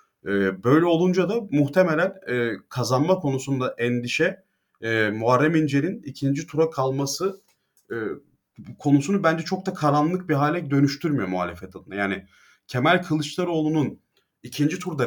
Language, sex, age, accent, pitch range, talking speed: Turkish, male, 30-49, native, 125-155 Hz, 110 wpm